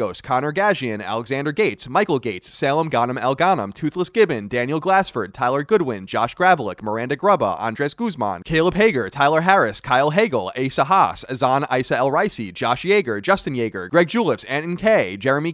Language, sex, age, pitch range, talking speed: English, male, 30-49, 125-195 Hz, 160 wpm